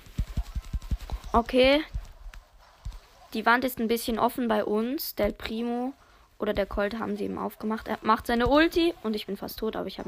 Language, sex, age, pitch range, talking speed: German, female, 20-39, 200-255 Hz, 180 wpm